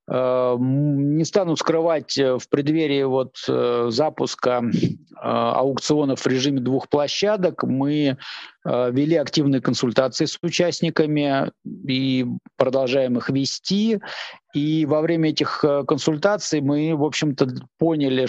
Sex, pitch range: male, 130-155 Hz